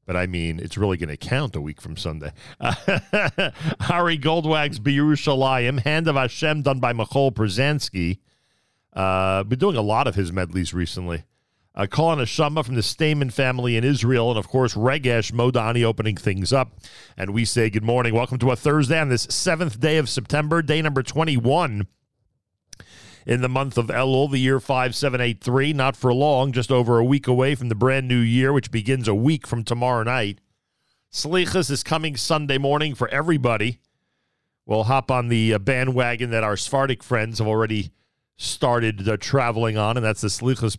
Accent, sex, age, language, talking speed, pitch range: American, male, 50-69, English, 175 wpm, 110-140 Hz